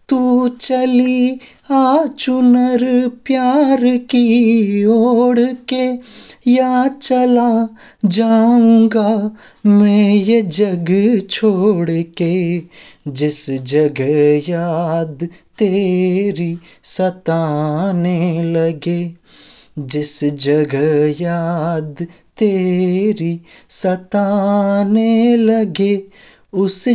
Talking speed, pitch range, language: 60 wpm, 170-225 Hz, Hindi